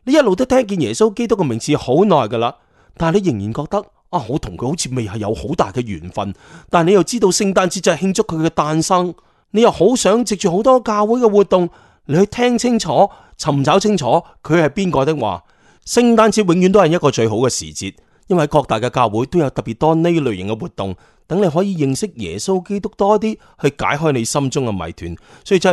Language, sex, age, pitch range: Chinese, male, 30-49, 135-205 Hz